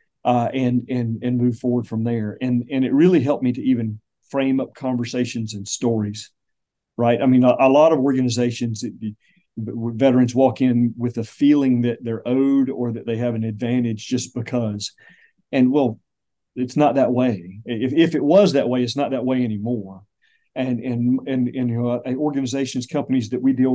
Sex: male